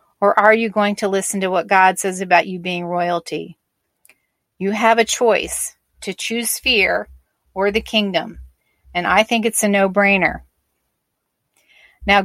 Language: English